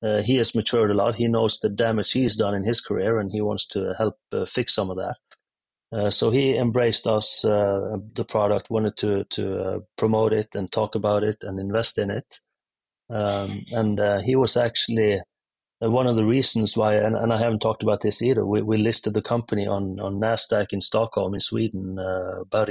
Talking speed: 215 wpm